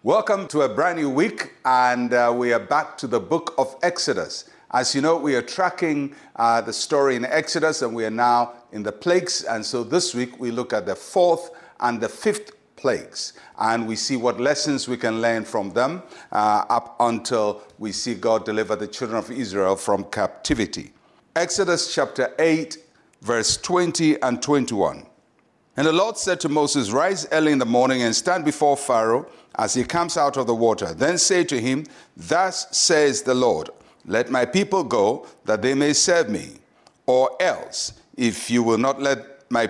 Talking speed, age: 185 wpm, 50-69